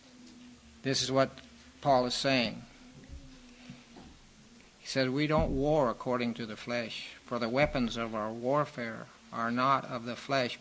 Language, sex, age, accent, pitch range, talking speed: English, male, 50-69, American, 120-140 Hz, 145 wpm